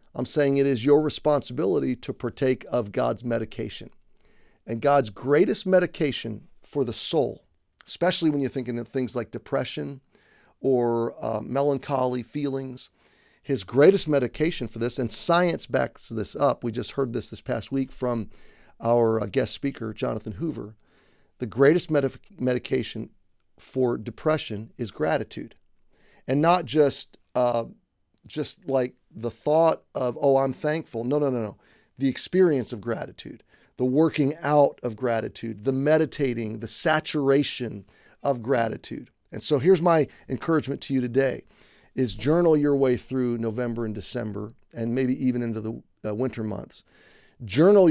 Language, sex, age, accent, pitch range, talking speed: English, male, 50-69, American, 115-145 Hz, 145 wpm